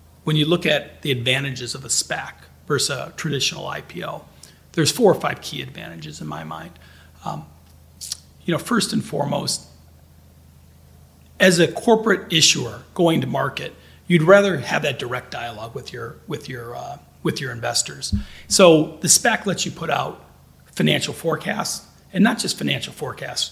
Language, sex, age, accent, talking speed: English, male, 40-59, American, 160 wpm